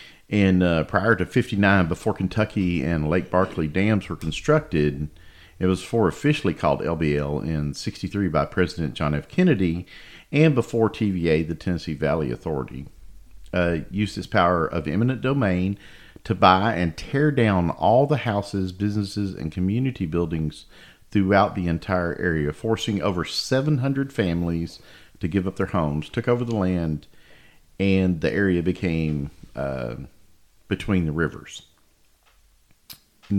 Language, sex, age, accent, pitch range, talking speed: English, male, 50-69, American, 80-100 Hz, 140 wpm